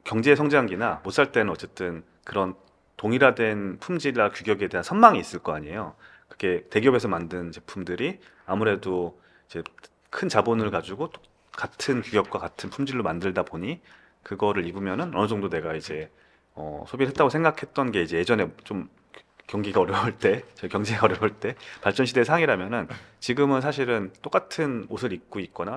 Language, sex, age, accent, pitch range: Korean, male, 30-49, native, 95-145 Hz